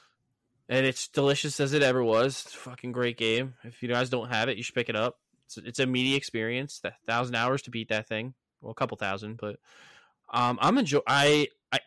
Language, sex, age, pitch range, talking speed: English, male, 10-29, 110-130 Hz, 235 wpm